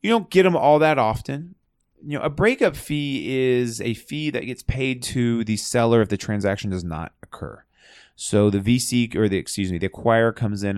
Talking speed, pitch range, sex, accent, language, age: 210 wpm, 100-130 Hz, male, American, English, 30-49